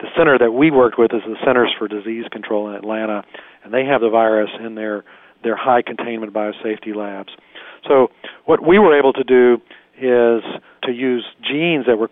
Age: 40-59